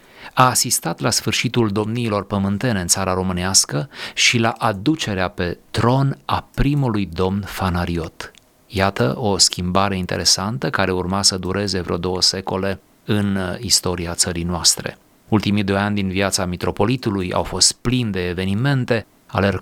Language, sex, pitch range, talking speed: Romanian, male, 95-110 Hz, 140 wpm